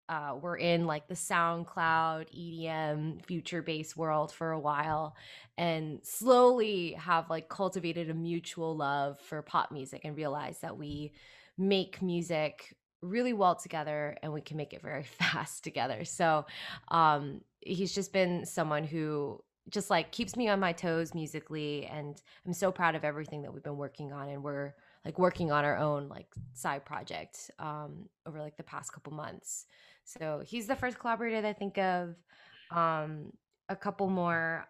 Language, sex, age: English, female, 20-39